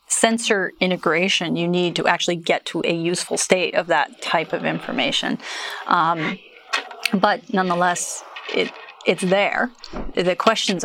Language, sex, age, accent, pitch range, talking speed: English, female, 30-49, American, 170-190 Hz, 135 wpm